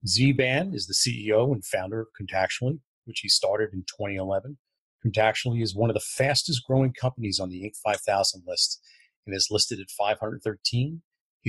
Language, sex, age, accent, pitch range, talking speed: English, male, 40-59, American, 105-135 Hz, 160 wpm